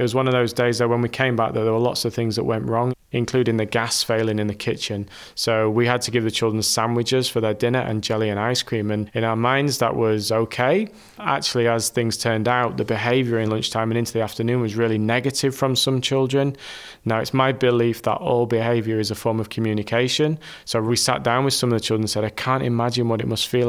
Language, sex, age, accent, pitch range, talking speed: English, male, 20-39, British, 110-125 Hz, 250 wpm